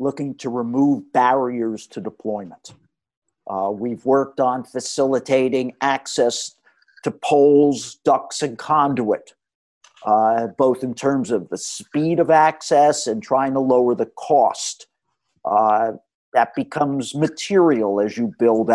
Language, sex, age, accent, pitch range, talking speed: English, male, 50-69, American, 130-165 Hz, 125 wpm